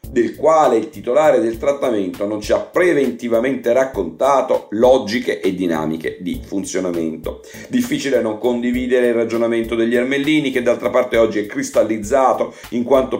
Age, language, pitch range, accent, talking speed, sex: 50-69, Italian, 105-125 Hz, native, 140 wpm, male